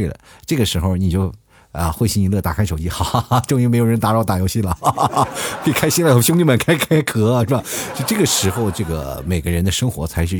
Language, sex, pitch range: Chinese, male, 90-130 Hz